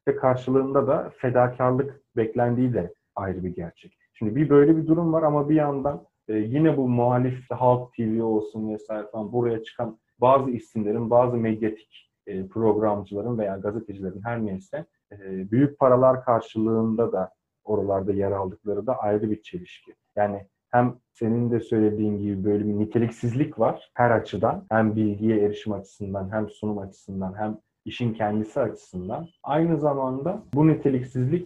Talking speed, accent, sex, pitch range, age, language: 140 wpm, native, male, 105-135 Hz, 40-59, Turkish